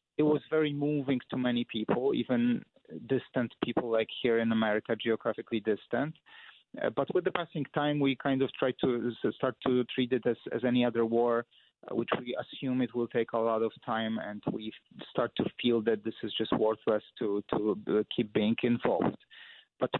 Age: 30-49